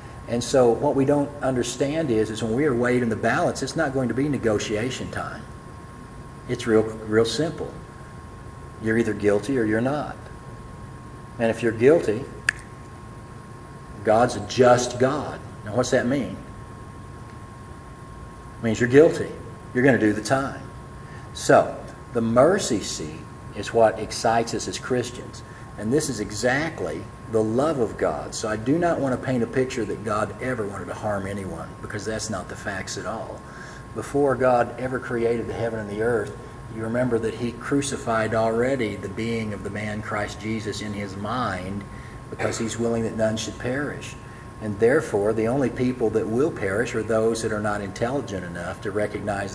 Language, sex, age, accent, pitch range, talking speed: English, male, 50-69, American, 110-125 Hz, 175 wpm